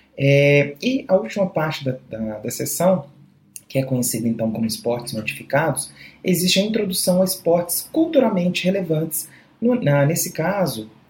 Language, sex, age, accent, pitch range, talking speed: English, male, 30-49, Brazilian, 120-180 Hz, 145 wpm